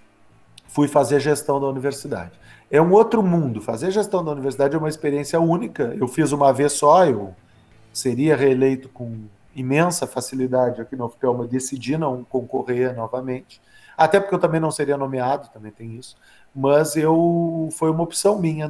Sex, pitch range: male, 125-160 Hz